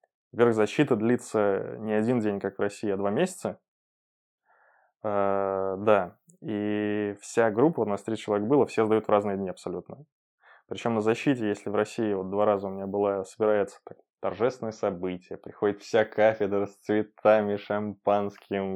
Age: 20-39